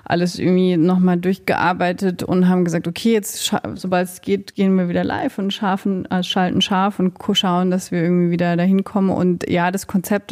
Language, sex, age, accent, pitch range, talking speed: German, female, 30-49, German, 175-190 Hz, 200 wpm